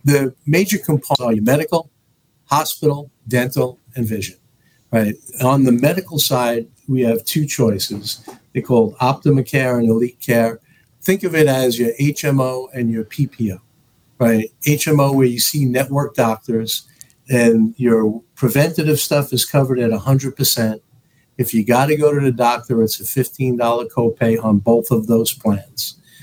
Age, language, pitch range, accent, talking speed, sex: 50-69, English, 115-140 Hz, American, 150 wpm, male